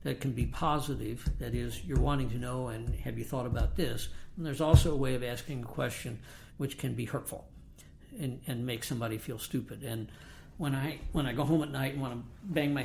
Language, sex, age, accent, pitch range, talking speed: English, male, 60-79, American, 115-145 Hz, 230 wpm